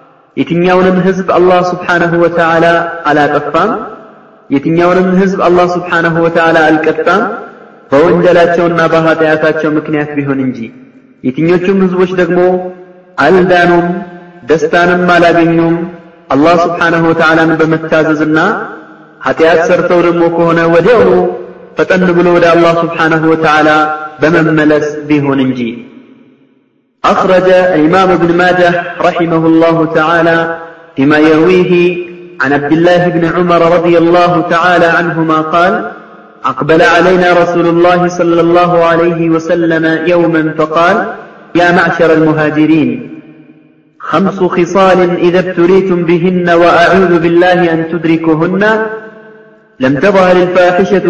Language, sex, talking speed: Amharic, male, 90 wpm